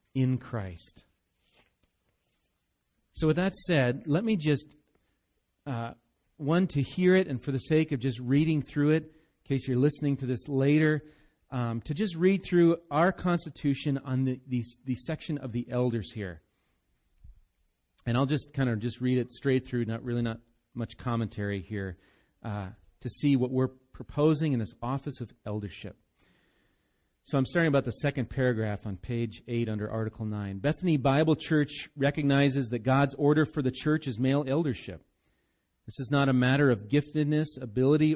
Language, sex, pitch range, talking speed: English, male, 115-145 Hz, 170 wpm